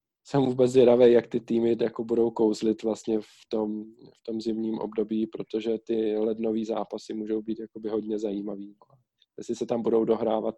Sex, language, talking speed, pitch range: male, Czech, 165 wpm, 110-125 Hz